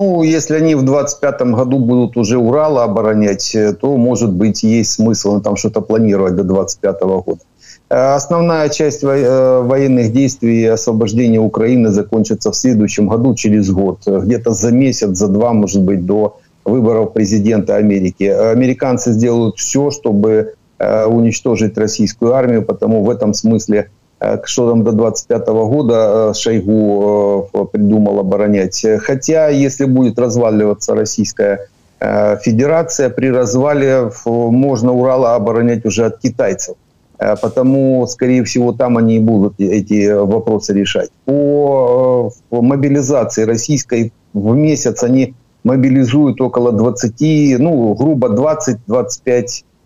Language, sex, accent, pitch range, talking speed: Ukrainian, male, native, 105-130 Hz, 120 wpm